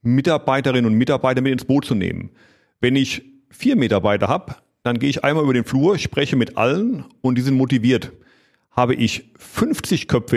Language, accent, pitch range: German, German, 125-145 Hz